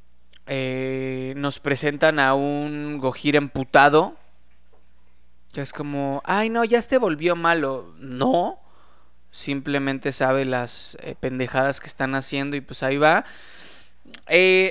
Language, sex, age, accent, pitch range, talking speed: Spanish, male, 20-39, Mexican, 135-175 Hz, 120 wpm